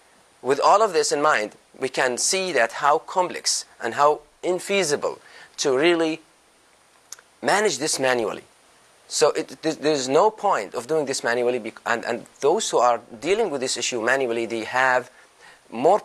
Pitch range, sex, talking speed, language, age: 130-195 Hz, male, 155 wpm, English, 30-49